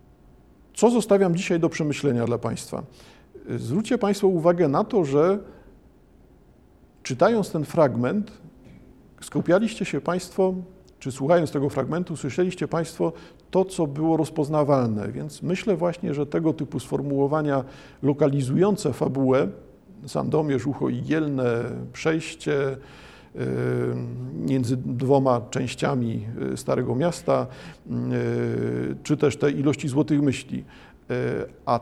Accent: native